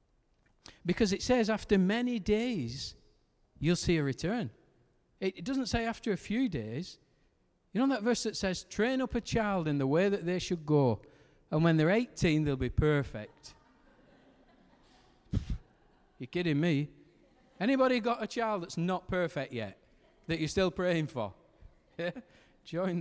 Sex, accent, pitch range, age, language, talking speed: male, British, 135-215 Hz, 40-59, English, 150 wpm